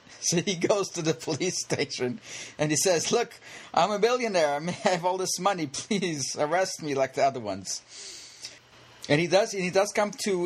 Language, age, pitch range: English, 40-59, 105-135 Hz